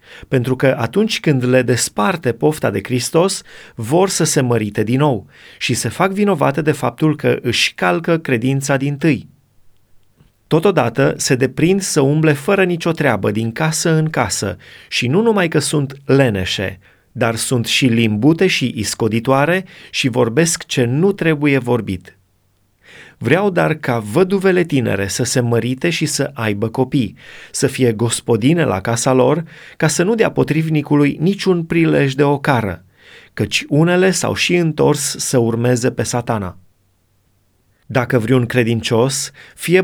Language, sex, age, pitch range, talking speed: Romanian, male, 30-49, 115-160 Hz, 145 wpm